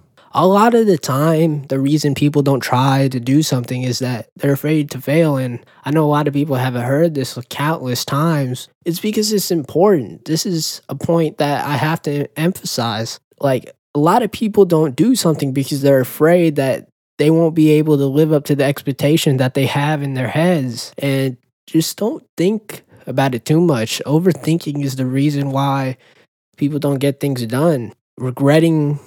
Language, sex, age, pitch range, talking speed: English, male, 20-39, 130-155 Hz, 190 wpm